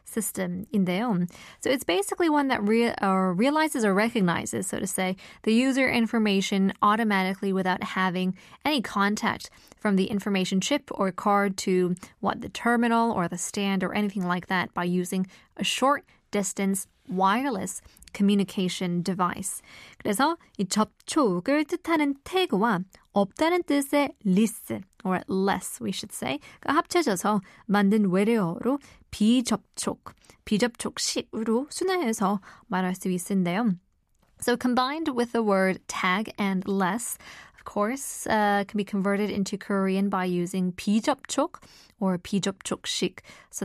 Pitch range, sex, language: 190-240 Hz, female, Korean